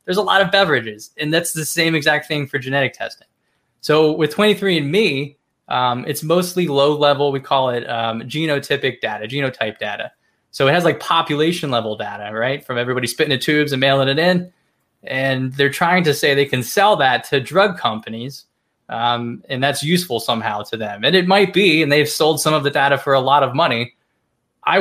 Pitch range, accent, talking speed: 130-165 Hz, American, 200 wpm